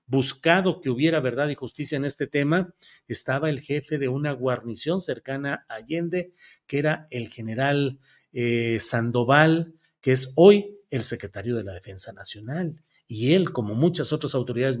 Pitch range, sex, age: 130-175 Hz, male, 40-59